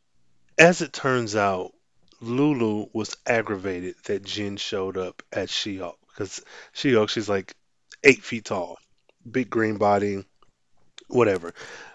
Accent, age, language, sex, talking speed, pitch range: American, 20-39, English, male, 120 wpm, 100-135 Hz